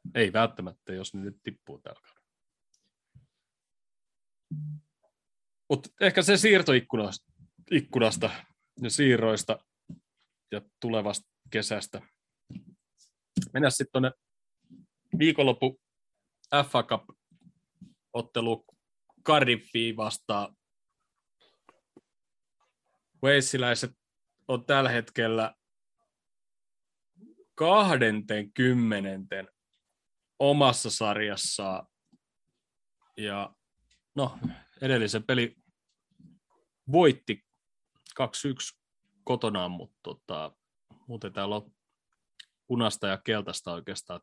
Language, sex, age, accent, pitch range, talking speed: Finnish, male, 30-49, native, 105-140 Hz, 60 wpm